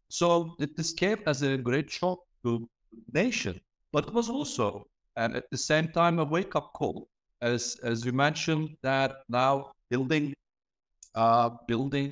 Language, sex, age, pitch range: Turkish, male, 60-79, 120-165 Hz